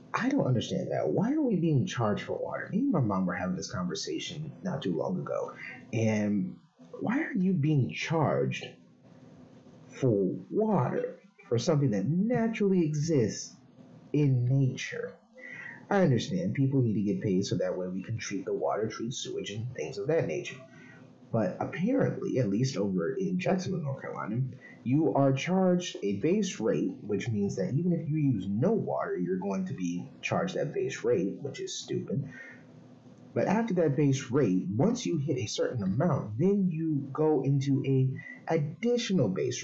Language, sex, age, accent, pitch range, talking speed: English, male, 30-49, American, 115-185 Hz, 170 wpm